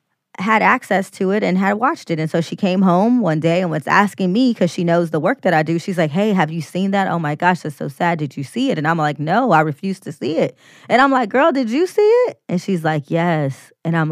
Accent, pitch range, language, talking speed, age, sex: American, 155-185 Hz, English, 285 wpm, 20-39, female